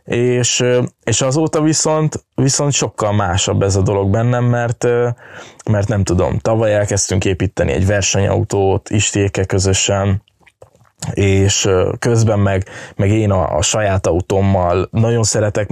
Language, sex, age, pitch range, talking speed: Hungarian, male, 20-39, 100-120 Hz, 125 wpm